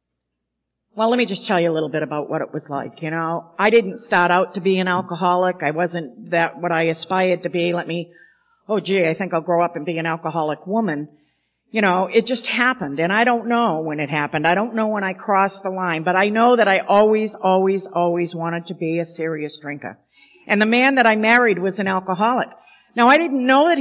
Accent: American